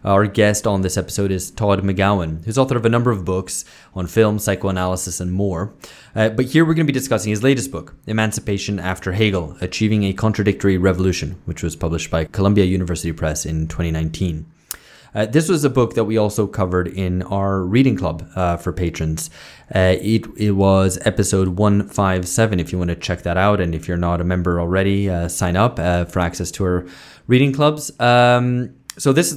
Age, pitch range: 20-39, 90-110 Hz